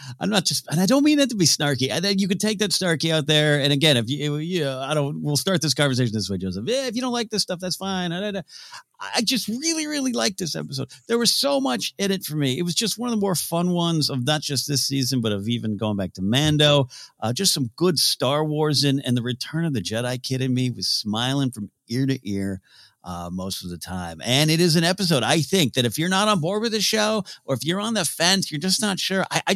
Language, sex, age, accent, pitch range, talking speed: English, male, 50-69, American, 125-180 Hz, 275 wpm